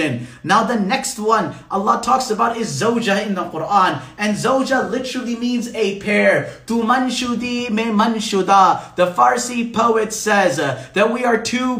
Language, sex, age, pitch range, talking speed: English, male, 30-49, 205-240 Hz, 160 wpm